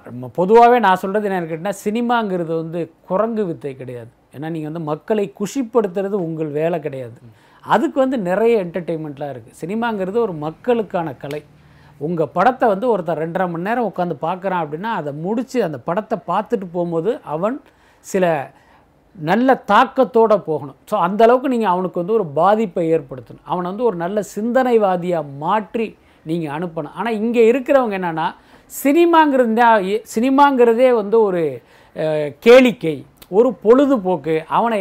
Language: Tamil